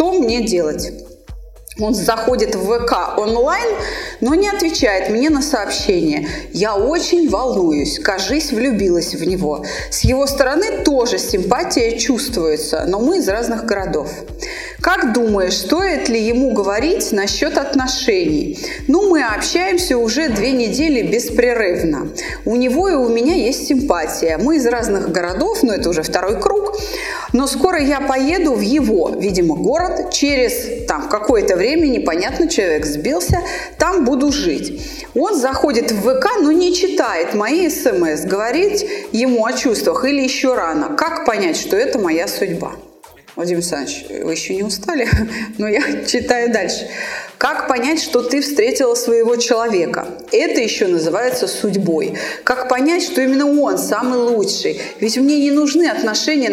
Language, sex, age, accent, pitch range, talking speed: Russian, female, 30-49, native, 230-335 Hz, 145 wpm